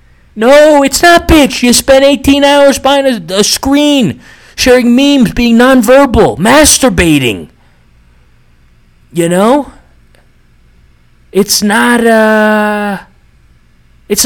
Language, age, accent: English, 30-49, American